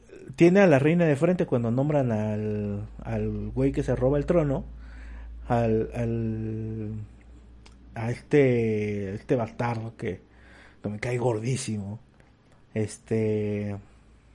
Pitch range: 110-135 Hz